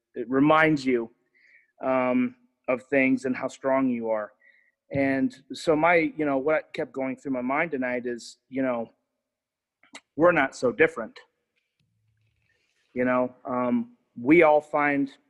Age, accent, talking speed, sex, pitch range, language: 30-49, American, 140 wpm, male, 125-145 Hz, English